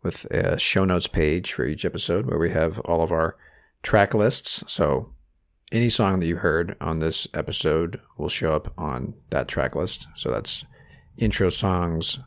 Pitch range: 80-105 Hz